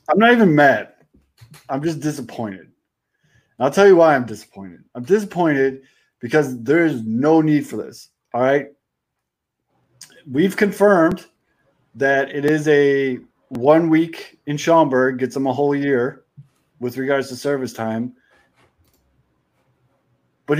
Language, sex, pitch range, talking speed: English, male, 135-175 Hz, 130 wpm